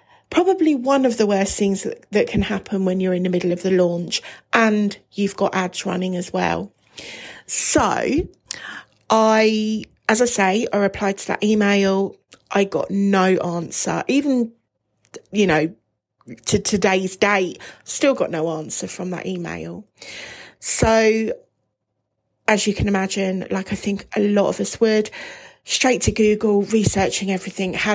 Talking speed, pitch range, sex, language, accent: 150 wpm, 185-225 Hz, female, English, British